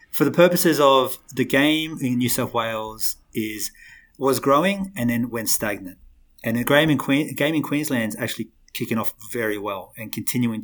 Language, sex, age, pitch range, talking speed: English, male, 30-49, 110-135 Hz, 185 wpm